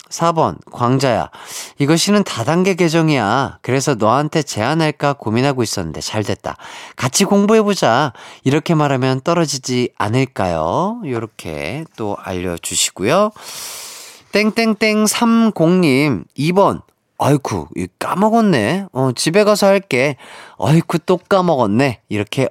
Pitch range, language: 115-180 Hz, Korean